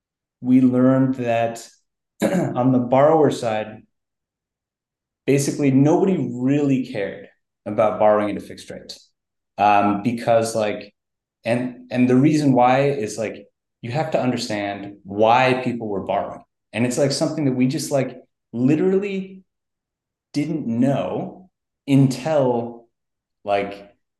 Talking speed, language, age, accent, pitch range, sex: 120 wpm, English, 30-49, American, 105-135 Hz, male